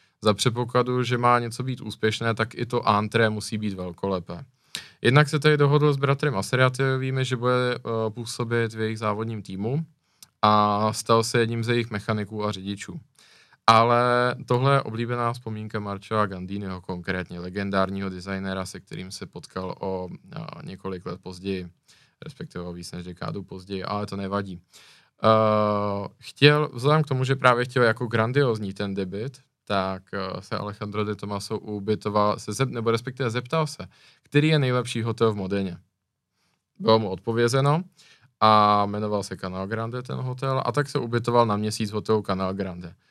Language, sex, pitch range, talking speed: Czech, male, 100-125 Hz, 155 wpm